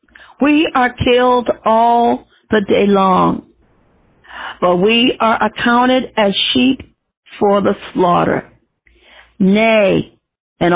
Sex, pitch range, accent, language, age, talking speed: female, 205-270 Hz, American, English, 50-69, 100 wpm